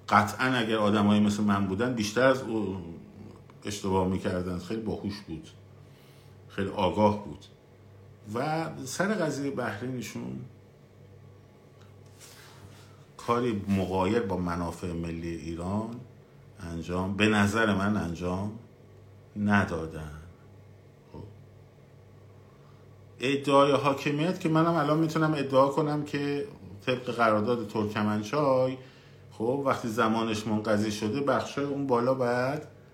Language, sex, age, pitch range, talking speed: Persian, male, 50-69, 105-135 Hz, 100 wpm